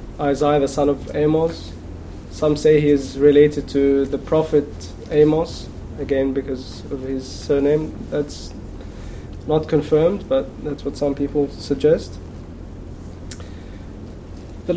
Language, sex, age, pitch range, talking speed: English, male, 20-39, 105-160 Hz, 120 wpm